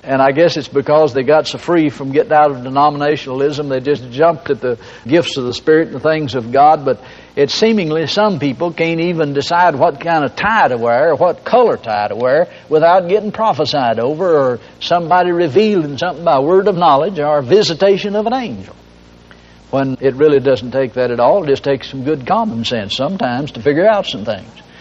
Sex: male